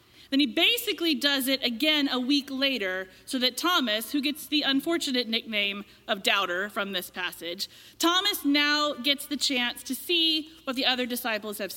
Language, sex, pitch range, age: English, female, 250-315 Hz, 30-49